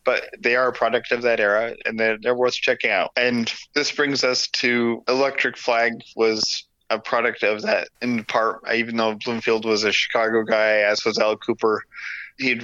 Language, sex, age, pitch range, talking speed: English, male, 20-39, 105-120 Hz, 190 wpm